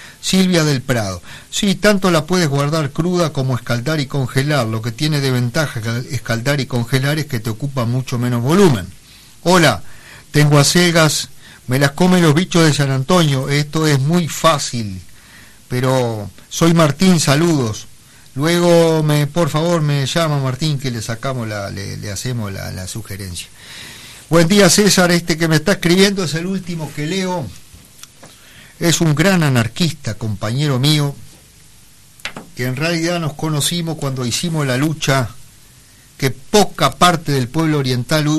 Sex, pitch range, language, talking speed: male, 125-165 Hz, Spanish, 155 wpm